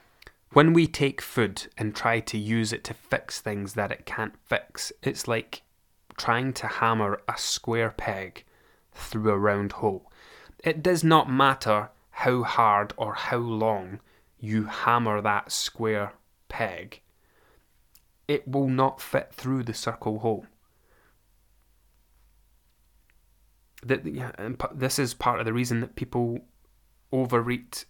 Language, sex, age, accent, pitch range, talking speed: English, male, 20-39, British, 105-135 Hz, 125 wpm